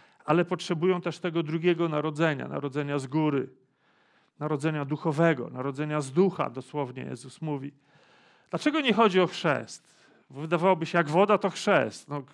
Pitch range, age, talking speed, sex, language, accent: 150-185 Hz, 40-59, 135 wpm, male, Polish, native